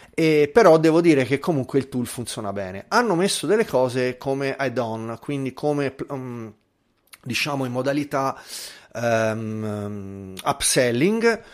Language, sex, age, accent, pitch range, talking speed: Italian, male, 30-49, native, 115-150 Hz, 115 wpm